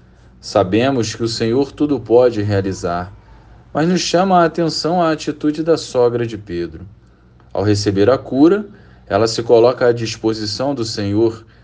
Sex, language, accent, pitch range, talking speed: male, Portuguese, Brazilian, 105-150 Hz, 150 wpm